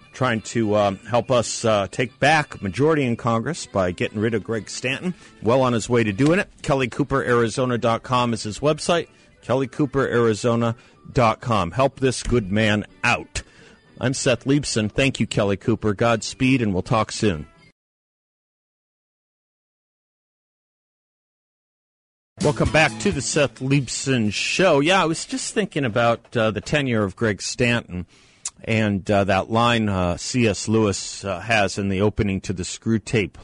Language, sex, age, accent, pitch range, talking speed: English, male, 50-69, American, 100-125 Hz, 145 wpm